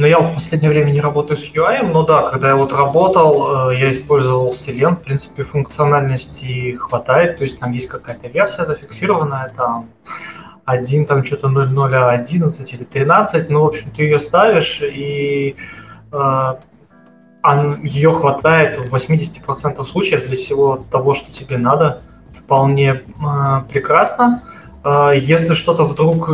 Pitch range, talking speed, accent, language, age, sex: 130-155 Hz, 135 wpm, native, Ukrainian, 20-39, male